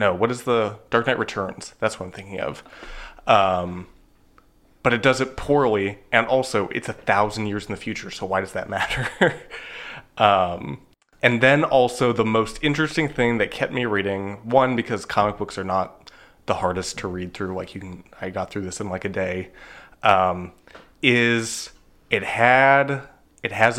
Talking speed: 180 wpm